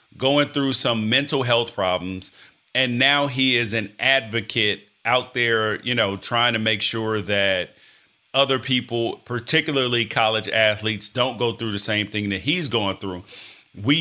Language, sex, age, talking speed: English, male, 30-49, 160 wpm